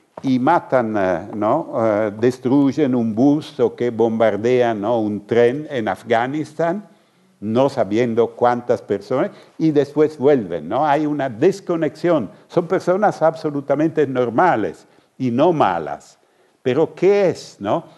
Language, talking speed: Spanish, 125 wpm